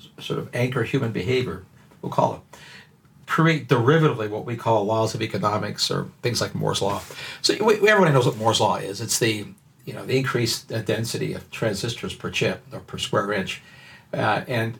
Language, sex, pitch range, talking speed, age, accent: English, male, 115-145 Hz, 190 wpm, 60-79, American